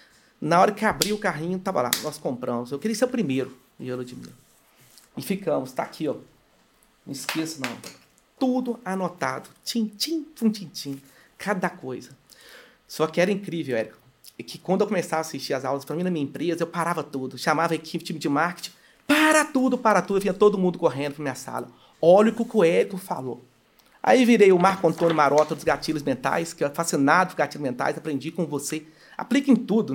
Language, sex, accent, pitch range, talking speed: Portuguese, male, Brazilian, 145-205 Hz, 200 wpm